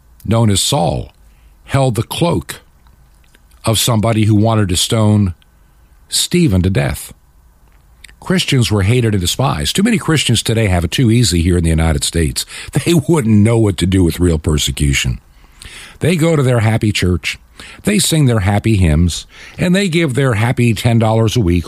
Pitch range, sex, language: 85-125 Hz, male, English